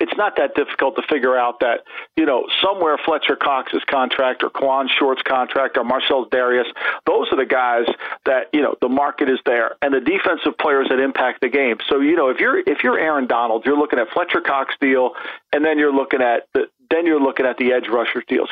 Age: 50-69